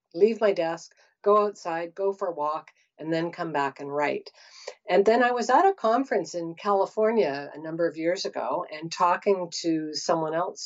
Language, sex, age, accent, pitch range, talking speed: English, female, 50-69, American, 160-215 Hz, 190 wpm